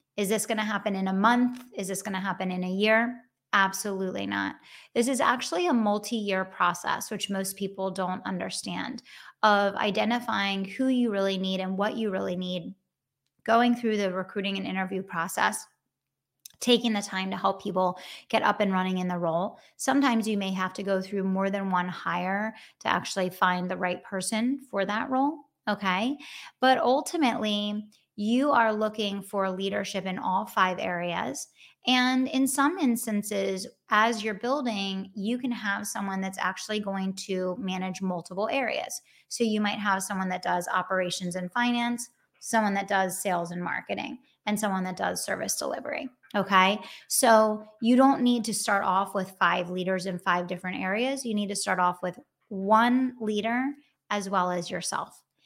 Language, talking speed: English, 170 wpm